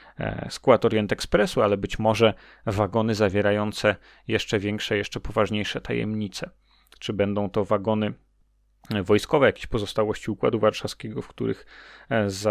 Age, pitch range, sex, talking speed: 30-49, 105-115 Hz, male, 115 wpm